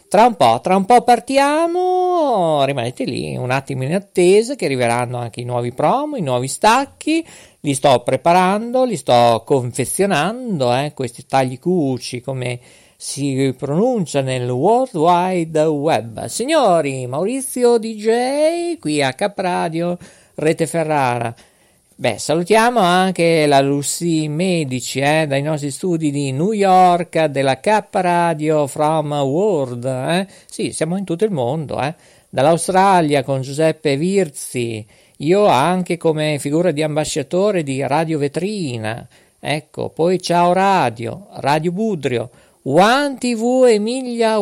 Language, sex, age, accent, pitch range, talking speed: Italian, male, 50-69, native, 140-195 Hz, 125 wpm